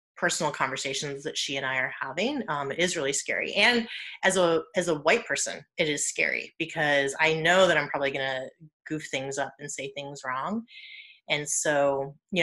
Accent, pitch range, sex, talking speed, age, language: American, 140-175 Hz, female, 200 wpm, 30-49, English